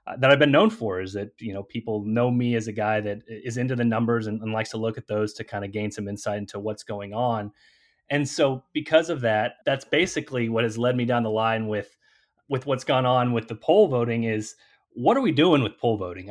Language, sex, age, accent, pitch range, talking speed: English, male, 30-49, American, 110-135 Hz, 250 wpm